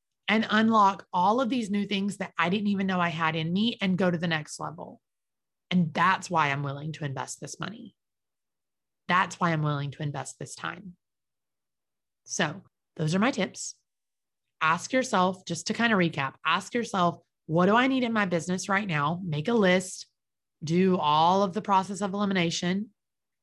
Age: 30-49